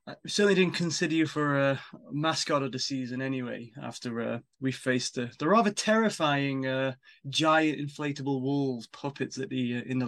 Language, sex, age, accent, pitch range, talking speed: English, male, 20-39, British, 135-185 Hz, 180 wpm